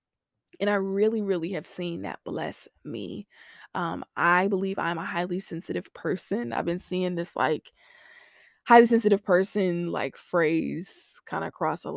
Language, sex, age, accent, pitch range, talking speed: English, female, 20-39, American, 155-195 Hz, 155 wpm